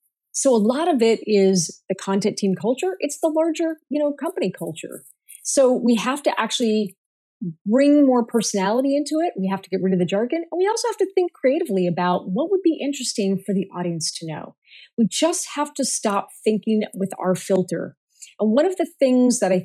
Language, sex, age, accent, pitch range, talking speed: English, female, 30-49, American, 190-275 Hz, 210 wpm